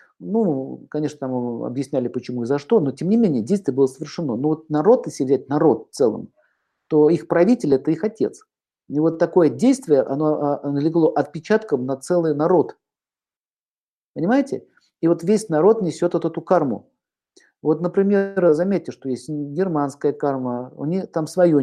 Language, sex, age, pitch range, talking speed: Russian, male, 50-69, 140-170 Hz, 165 wpm